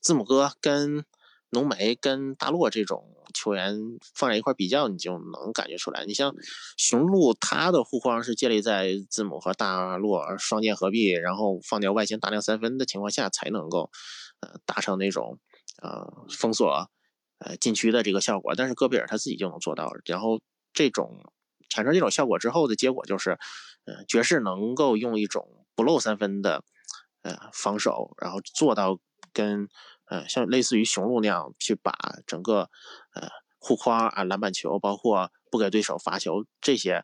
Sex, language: male, Chinese